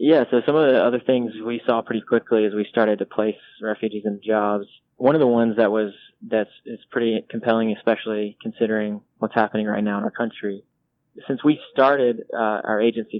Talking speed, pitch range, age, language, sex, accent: 205 wpm, 105-120 Hz, 20-39, English, male, American